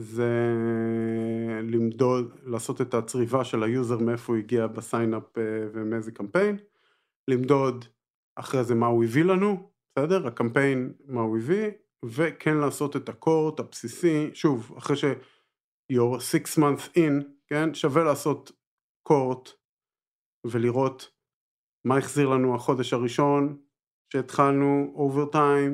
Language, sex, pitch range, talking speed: Hebrew, male, 120-145 Hz, 110 wpm